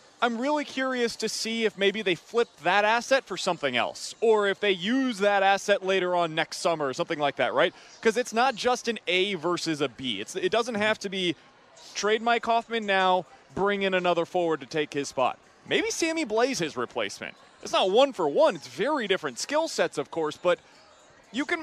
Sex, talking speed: male, 210 wpm